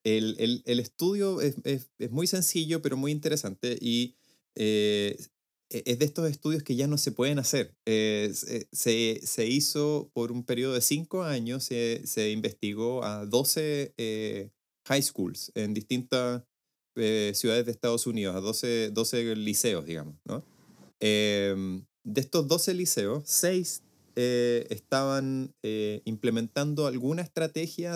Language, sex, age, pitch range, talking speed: Spanish, male, 30-49, 110-140 Hz, 145 wpm